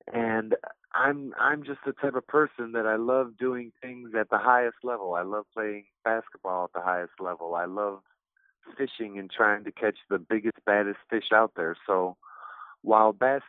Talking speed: 180 wpm